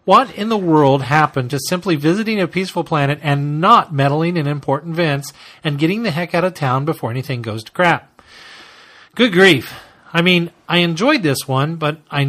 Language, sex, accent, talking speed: English, male, American, 190 wpm